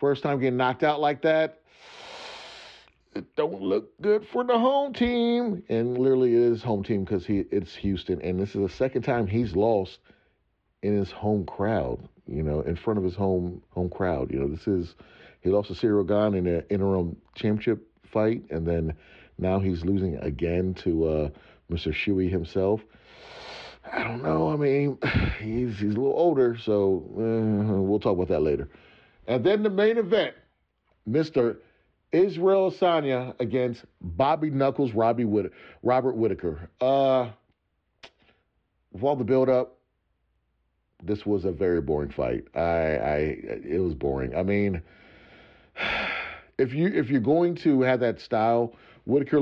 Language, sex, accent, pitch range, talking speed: English, male, American, 95-130 Hz, 160 wpm